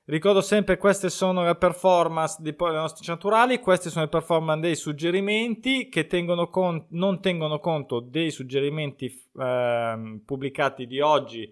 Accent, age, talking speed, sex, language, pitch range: native, 20-39, 140 wpm, male, Italian, 130-165 Hz